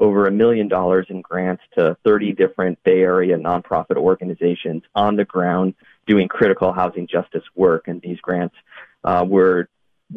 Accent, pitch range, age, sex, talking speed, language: American, 95-105 Hz, 30-49, male, 155 wpm, English